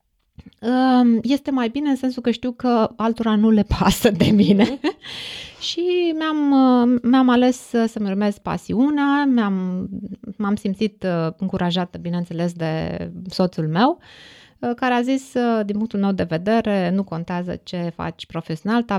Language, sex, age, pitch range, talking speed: Romanian, female, 20-39, 190-255 Hz, 130 wpm